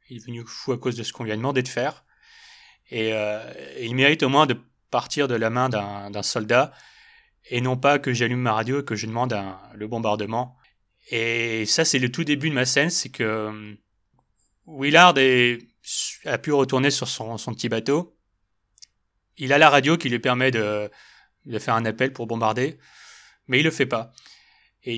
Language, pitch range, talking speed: French, 110-140 Hz, 200 wpm